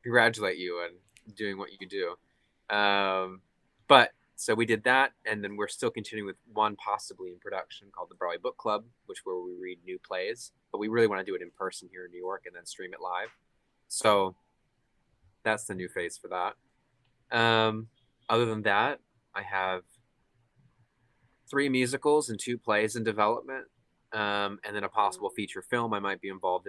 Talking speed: 185 wpm